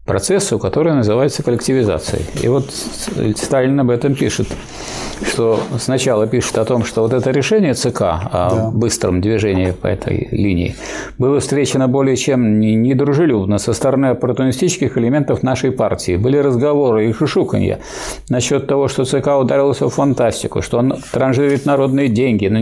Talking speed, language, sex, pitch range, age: 145 wpm, Russian, male, 115-140 Hz, 50-69